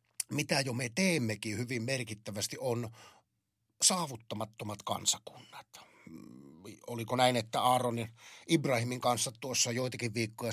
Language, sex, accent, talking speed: Finnish, male, native, 110 wpm